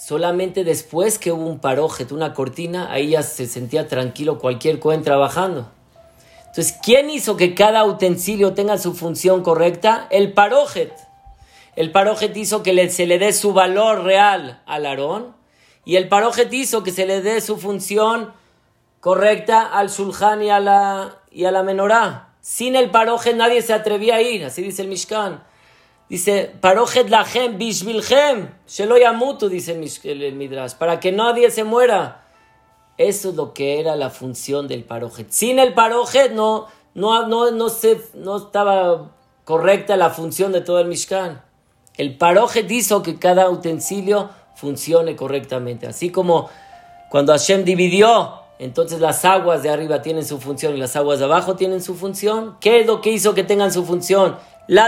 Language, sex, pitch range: Spanish, male, 160-215 Hz